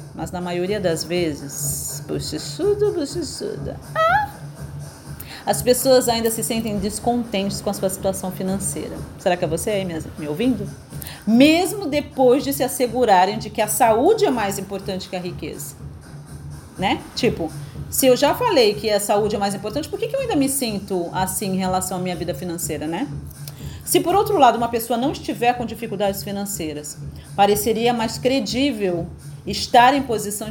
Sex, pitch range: female, 185-255 Hz